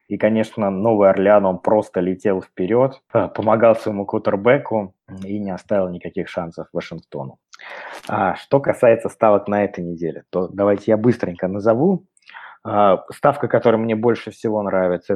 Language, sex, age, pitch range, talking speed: Russian, male, 20-39, 95-110 Hz, 135 wpm